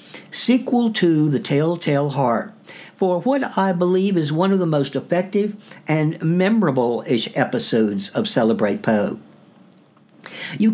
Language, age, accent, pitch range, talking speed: English, 60-79, American, 135-190 Hz, 125 wpm